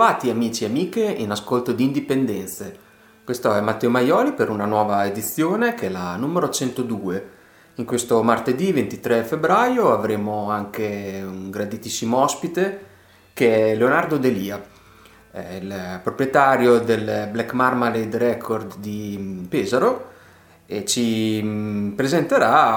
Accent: native